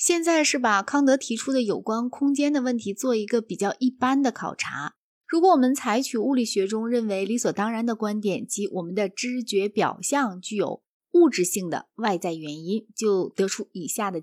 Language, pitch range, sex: Chinese, 200-275 Hz, female